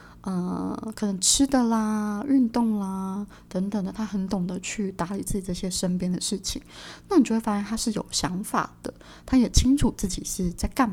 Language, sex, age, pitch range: Chinese, female, 20-39, 185-230 Hz